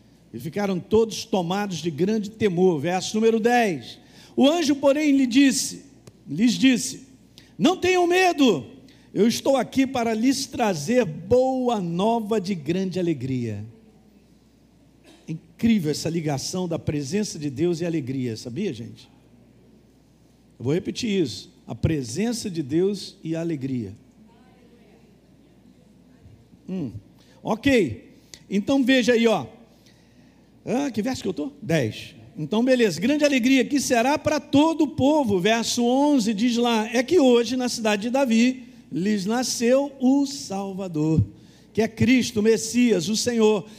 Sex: male